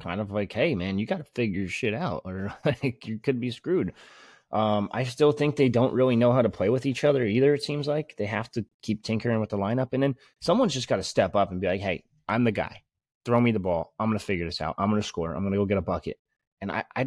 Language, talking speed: English, 290 wpm